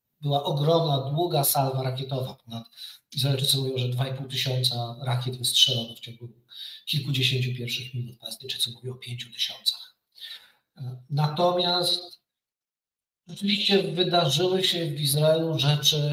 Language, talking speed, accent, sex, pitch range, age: Polish, 110 wpm, native, male, 130-170 Hz, 40-59